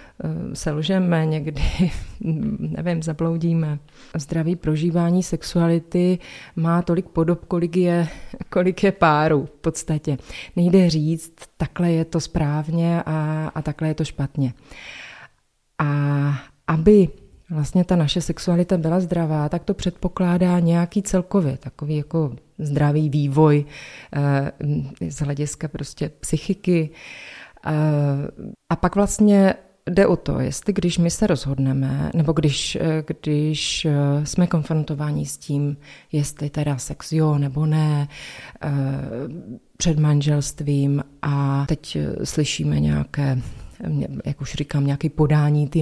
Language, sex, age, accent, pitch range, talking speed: Czech, female, 30-49, native, 145-175 Hz, 115 wpm